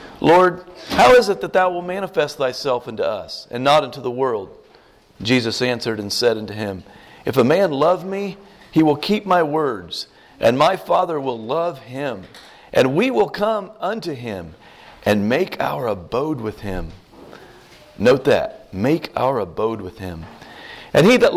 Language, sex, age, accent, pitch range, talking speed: English, male, 50-69, American, 125-195 Hz, 170 wpm